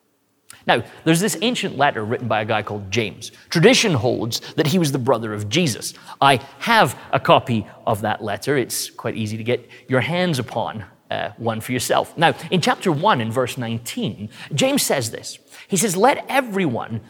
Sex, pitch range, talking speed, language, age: male, 120-185 Hz, 185 wpm, English, 30-49